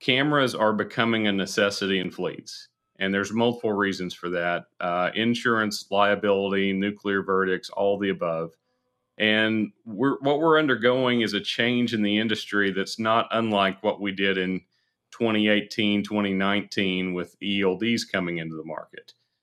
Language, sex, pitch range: English, male, 95-110 Hz